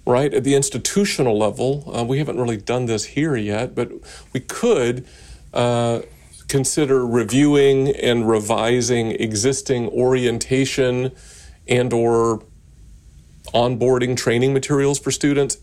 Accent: American